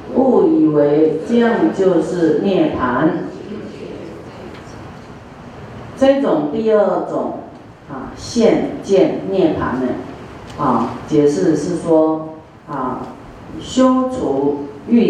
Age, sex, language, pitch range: 40-59, female, Chinese, 160-235 Hz